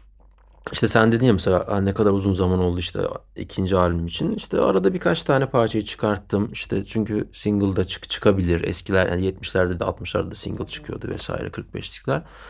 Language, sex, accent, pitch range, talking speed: Turkish, male, native, 95-140 Hz, 170 wpm